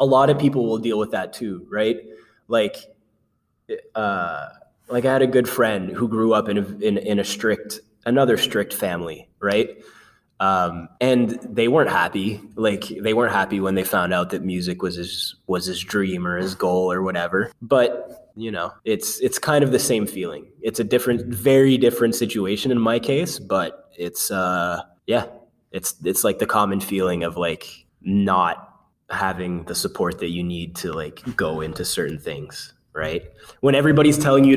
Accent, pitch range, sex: American, 95-120 Hz, male